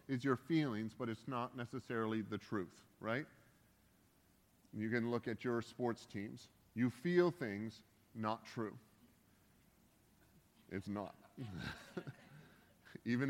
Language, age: English, 40-59